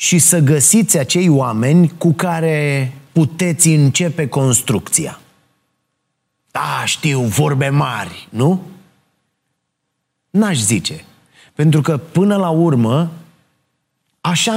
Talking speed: 95 wpm